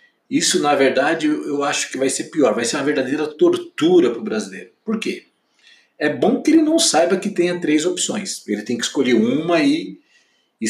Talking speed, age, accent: 200 wpm, 50-69, Brazilian